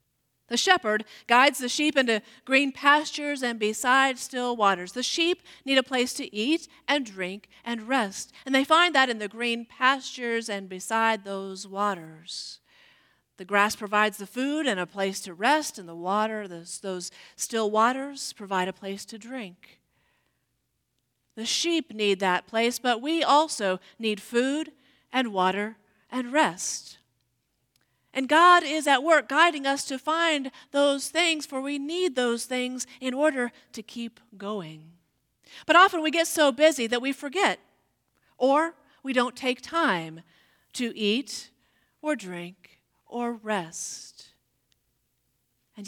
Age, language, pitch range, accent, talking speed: 40-59, English, 195-275 Hz, American, 150 wpm